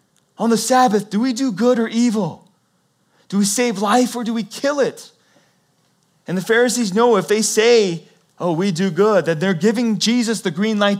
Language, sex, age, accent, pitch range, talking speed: English, male, 30-49, American, 150-230 Hz, 195 wpm